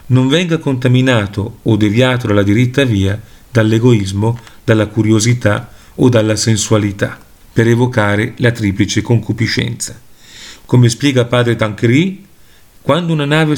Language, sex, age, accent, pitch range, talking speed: Italian, male, 40-59, native, 110-130 Hz, 115 wpm